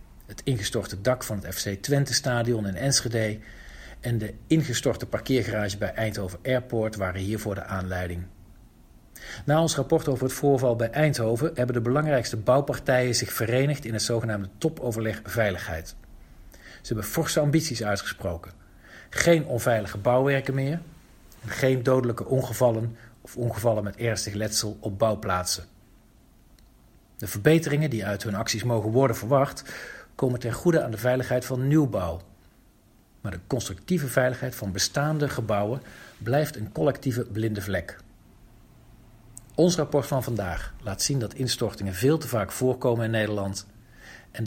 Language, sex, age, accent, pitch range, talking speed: Dutch, male, 40-59, Dutch, 100-130 Hz, 140 wpm